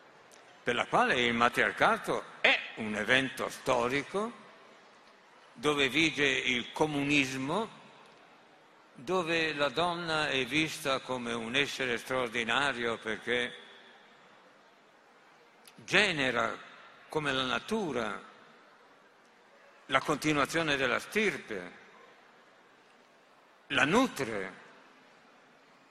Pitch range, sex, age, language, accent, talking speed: 135-165 Hz, male, 60-79, Italian, native, 75 wpm